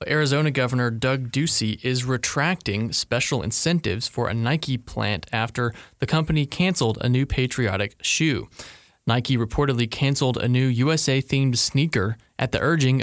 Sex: male